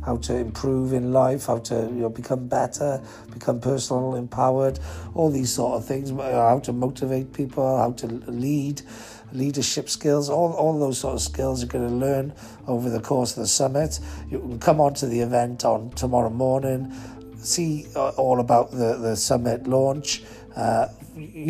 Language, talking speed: English, 175 wpm